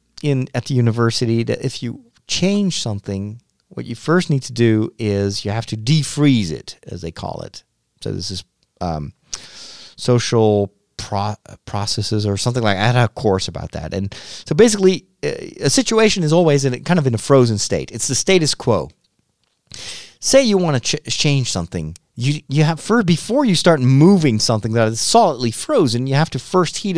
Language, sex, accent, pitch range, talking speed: English, male, American, 105-150 Hz, 190 wpm